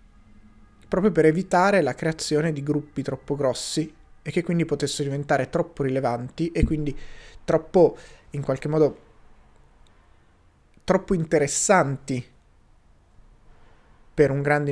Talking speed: 110 wpm